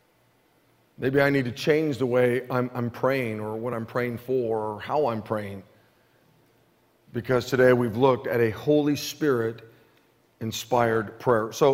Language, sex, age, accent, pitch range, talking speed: English, male, 50-69, American, 130-210 Hz, 150 wpm